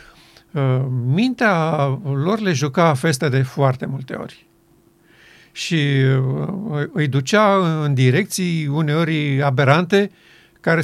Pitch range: 135-180 Hz